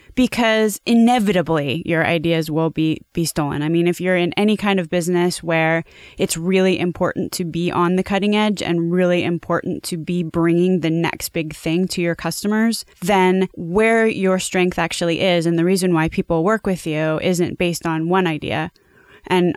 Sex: female